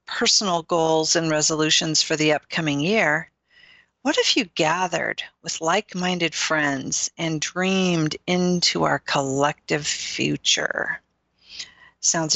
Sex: female